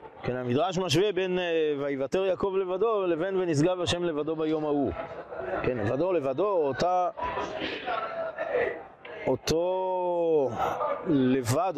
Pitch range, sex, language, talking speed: 135-195 Hz, male, Hebrew, 95 wpm